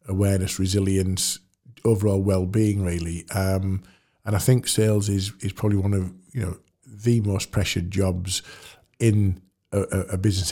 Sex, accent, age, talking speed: male, British, 50-69, 145 wpm